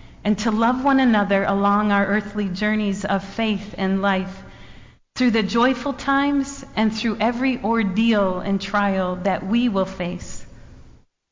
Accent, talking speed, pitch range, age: American, 145 wpm, 195-240 Hz, 40-59